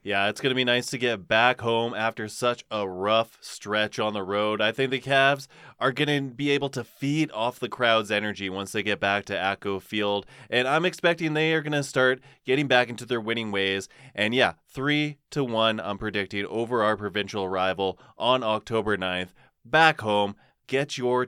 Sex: male